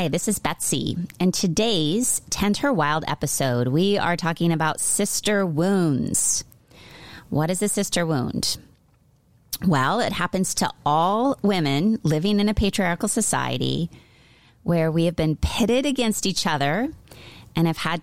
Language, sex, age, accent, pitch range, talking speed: English, female, 30-49, American, 145-190 Hz, 145 wpm